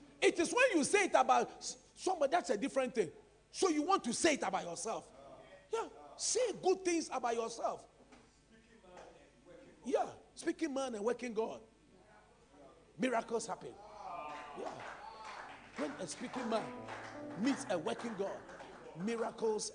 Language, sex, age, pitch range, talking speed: English, male, 40-59, 180-275 Hz, 135 wpm